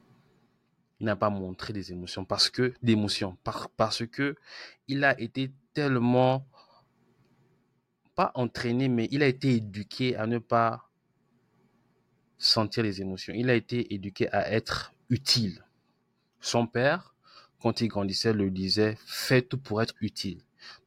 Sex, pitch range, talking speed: male, 105-125 Hz, 145 wpm